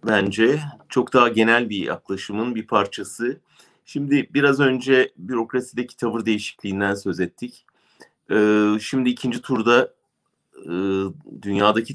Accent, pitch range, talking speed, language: Turkish, 95-120 Hz, 100 wpm, German